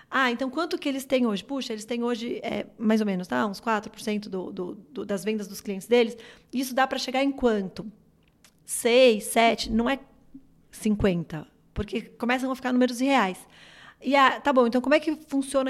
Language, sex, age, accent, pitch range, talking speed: English, female, 30-49, Brazilian, 220-265 Hz, 200 wpm